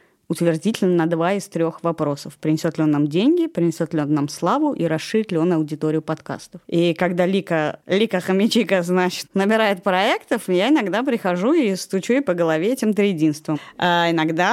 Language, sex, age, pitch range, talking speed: Russian, female, 20-39, 160-185 Hz, 175 wpm